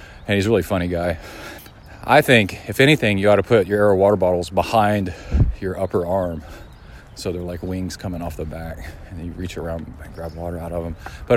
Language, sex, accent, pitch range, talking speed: English, male, American, 85-110 Hz, 220 wpm